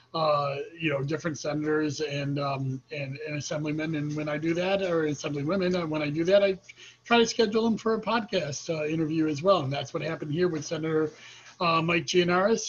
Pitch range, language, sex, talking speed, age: 145-180 Hz, English, male, 210 wpm, 40-59